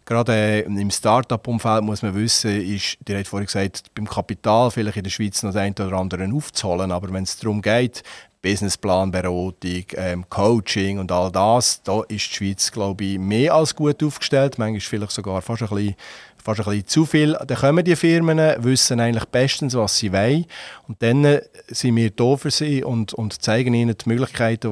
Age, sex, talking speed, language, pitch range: 40-59, male, 180 wpm, German, 100-130 Hz